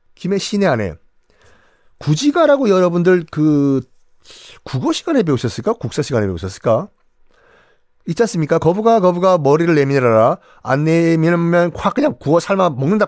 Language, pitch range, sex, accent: Korean, 120-195 Hz, male, native